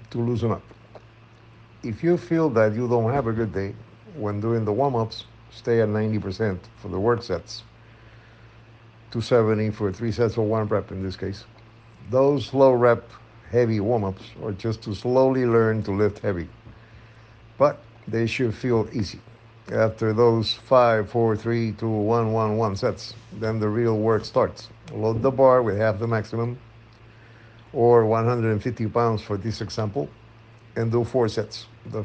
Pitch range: 110-120 Hz